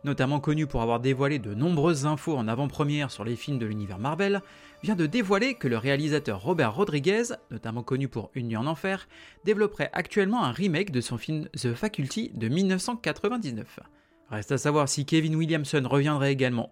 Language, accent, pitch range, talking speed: French, French, 135-195 Hz, 180 wpm